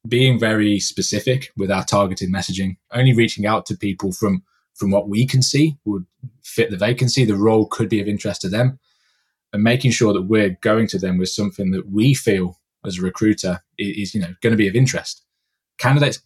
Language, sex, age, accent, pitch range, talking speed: English, male, 20-39, British, 100-120 Hz, 200 wpm